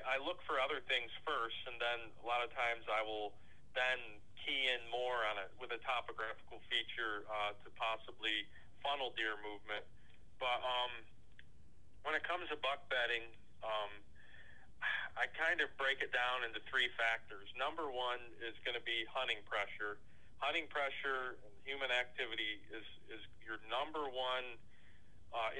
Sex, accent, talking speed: male, American, 155 wpm